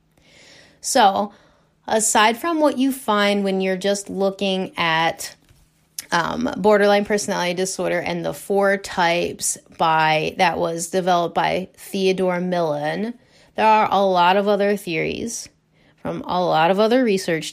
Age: 30-49